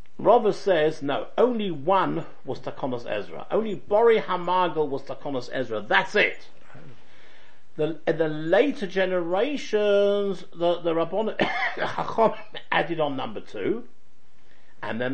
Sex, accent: male, British